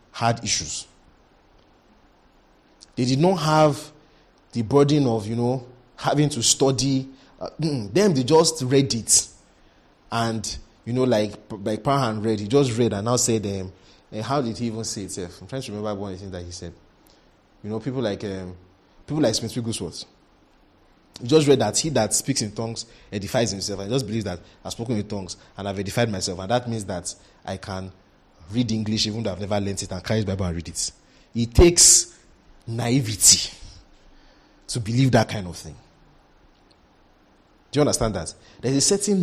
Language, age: English, 30-49